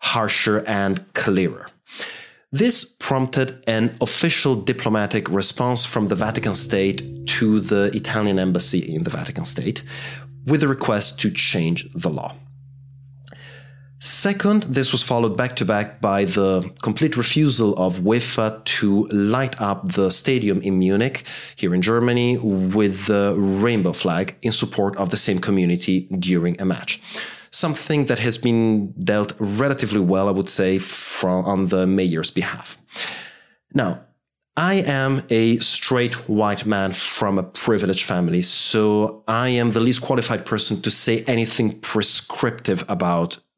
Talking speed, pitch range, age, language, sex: 140 wpm, 100-125 Hz, 30-49, English, male